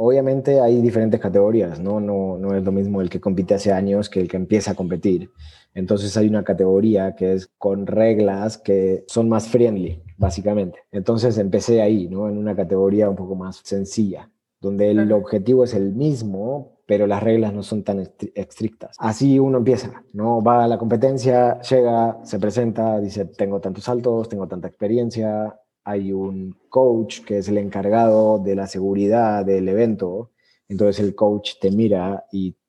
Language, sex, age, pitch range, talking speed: Spanish, male, 30-49, 100-115 Hz, 175 wpm